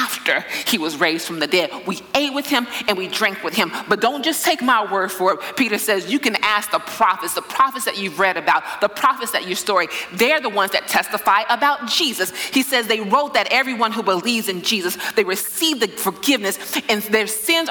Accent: American